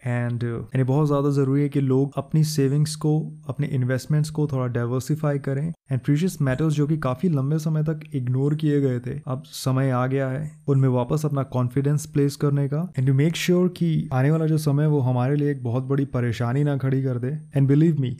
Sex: male